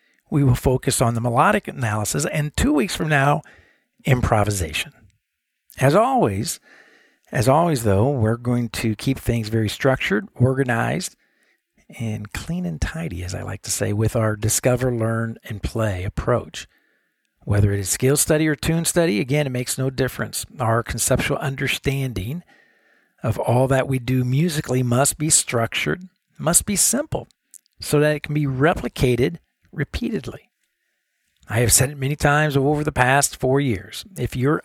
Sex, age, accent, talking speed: male, 50-69, American, 155 wpm